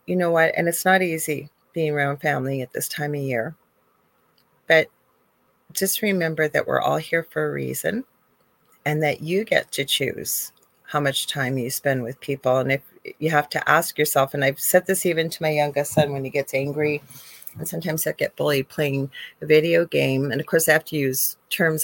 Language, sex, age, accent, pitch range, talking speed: English, female, 40-59, American, 140-165 Hz, 205 wpm